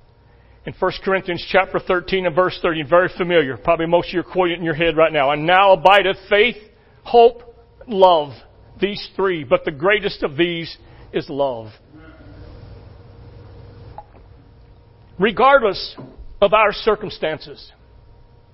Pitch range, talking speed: 145-230 Hz, 135 wpm